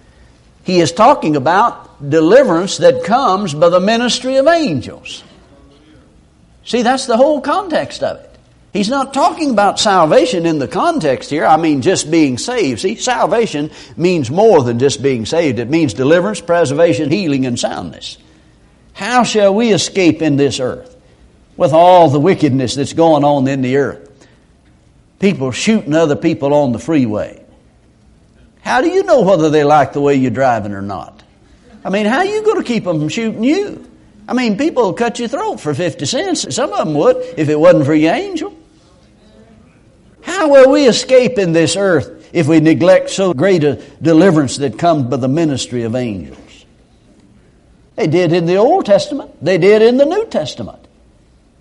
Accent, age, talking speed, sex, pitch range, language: American, 60-79, 175 wpm, male, 145-240 Hz, English